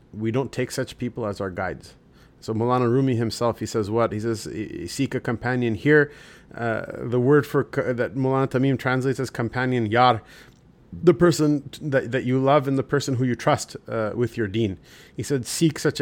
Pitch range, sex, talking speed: 105-130 Hz, male, 195 wpm